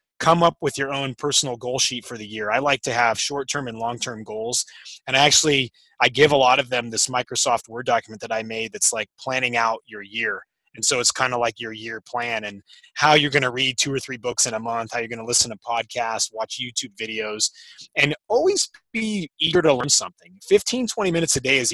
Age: 20-39